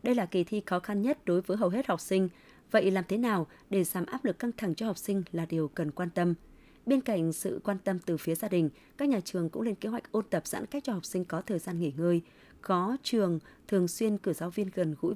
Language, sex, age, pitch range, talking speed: Vietnamese, female, 20-39, 175-225 Hz, 270 wpm